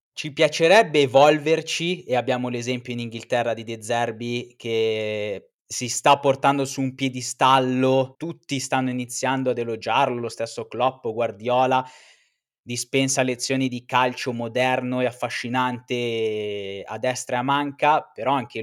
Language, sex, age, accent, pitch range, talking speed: Italian, male, 20-39, native, 115-135 Hz, 130 wpm